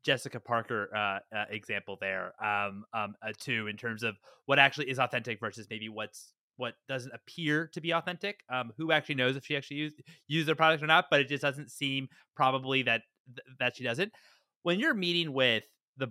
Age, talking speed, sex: 20-39, 205 wpm, male